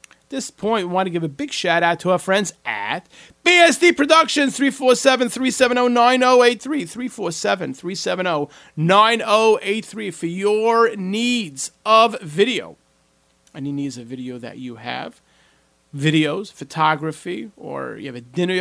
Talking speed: 120 wpm